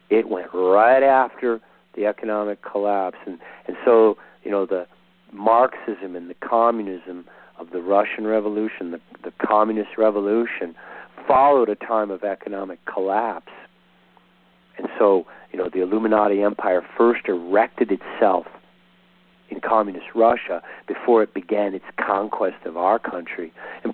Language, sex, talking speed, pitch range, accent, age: English, male, 135 wpm, 90-125 Hz, American, 50-69